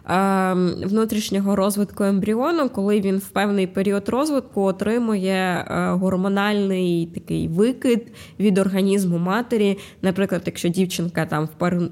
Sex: female